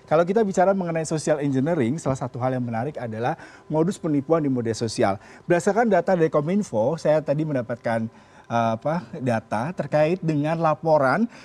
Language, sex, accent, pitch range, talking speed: Indonesian, male, native, 140-195 Hz, 150 wpm